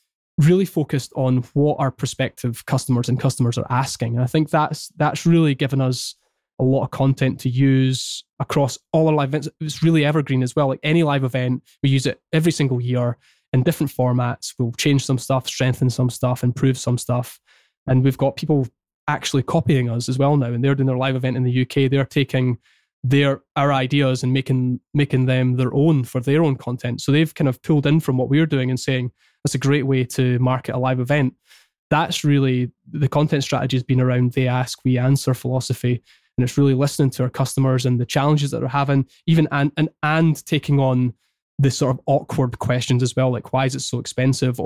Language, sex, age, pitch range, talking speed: English, male, 20-39, 125-145 Hz, 210 wpm